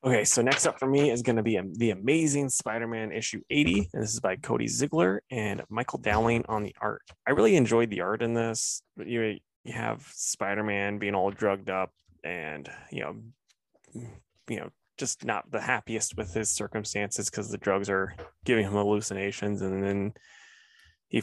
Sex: male